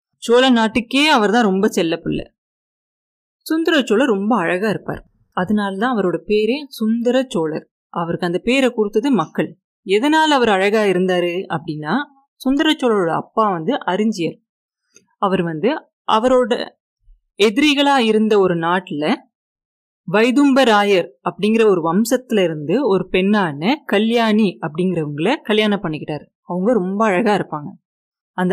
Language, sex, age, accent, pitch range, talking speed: Tamil, female, 30-49, native, 180-250 Hz, 115 wpm